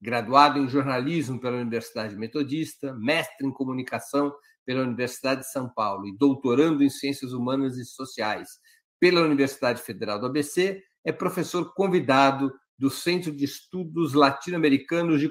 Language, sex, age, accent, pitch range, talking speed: Portuguese, male, 50-69, Brazilian, 130-160 Hz, 135 wpm